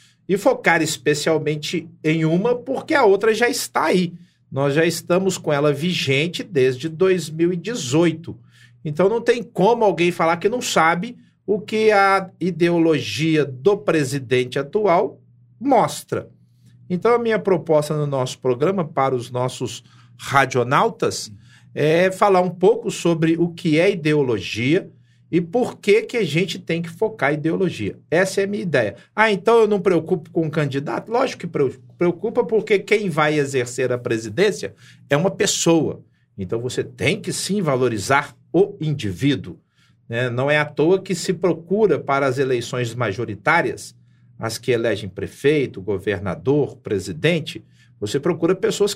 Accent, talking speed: Brazilian, 145 wpm